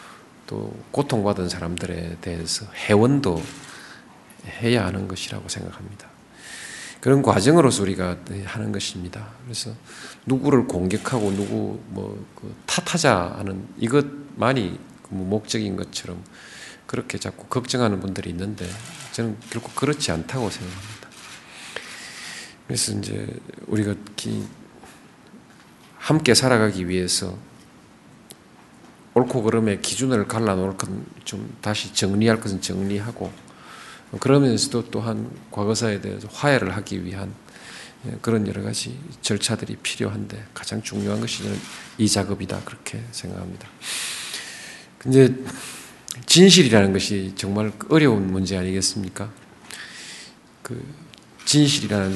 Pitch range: 95-120 Hz